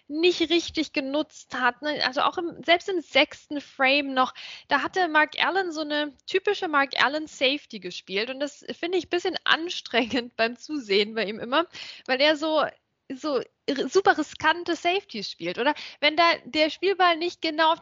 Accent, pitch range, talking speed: German, 245-315 Hz, 175 wpm